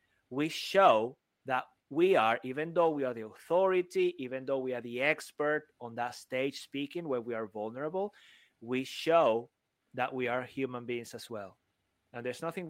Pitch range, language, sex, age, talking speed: 125-155 Hz, English, male, 30-49, 175 wpm